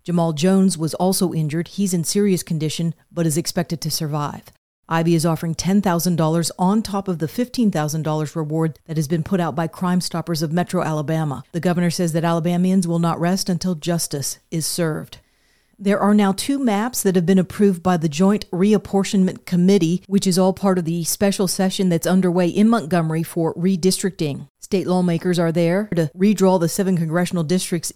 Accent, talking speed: American, 180 wpm